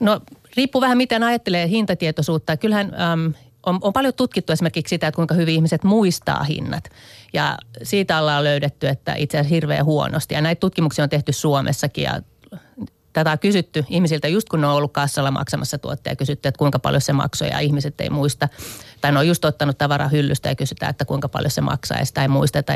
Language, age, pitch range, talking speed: Finnish, 30-49, 140-165 Hz, 200 wpm